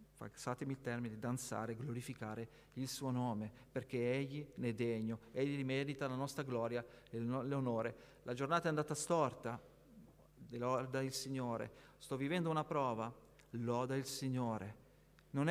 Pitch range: 125-160 Hz